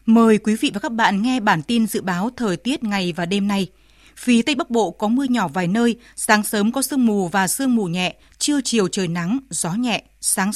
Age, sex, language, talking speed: 20-39, female, Vietnamese, 240 wpm